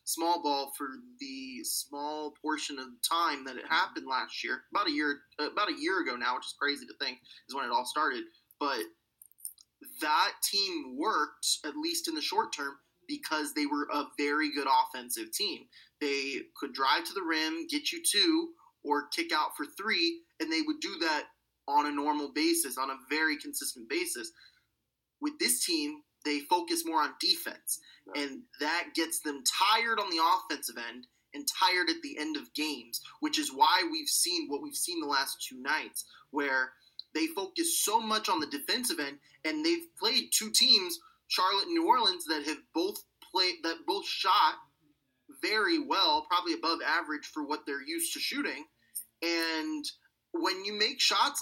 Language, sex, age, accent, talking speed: English, male, 20-39, American, 180 wpm